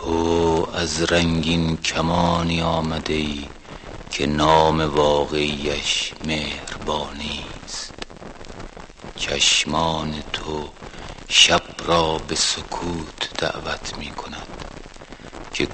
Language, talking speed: Persian, 70 wpm